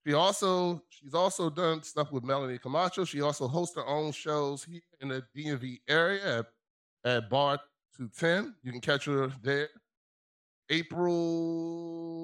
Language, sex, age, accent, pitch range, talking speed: English, male, 20-39, American, 135-170 Hz, 145 wpm